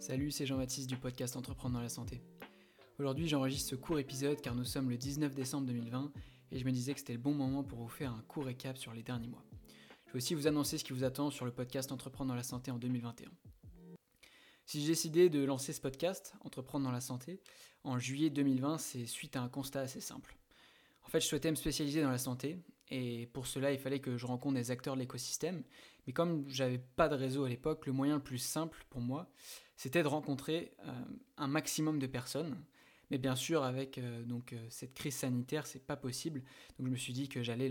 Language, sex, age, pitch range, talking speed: French, male, 20-39, 125-145 Hz, 230 wpm